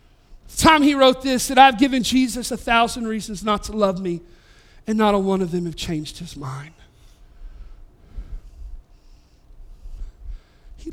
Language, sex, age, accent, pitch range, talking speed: English, male, 50-69, American, 205-335 Hz, 150 wpm